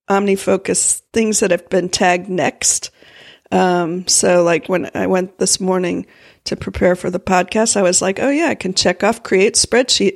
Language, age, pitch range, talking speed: English, 50-69, 180-210 Hz, 190 wpm